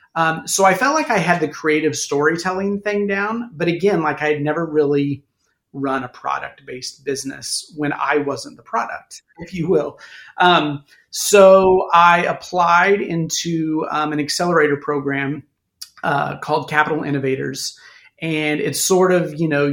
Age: 30-49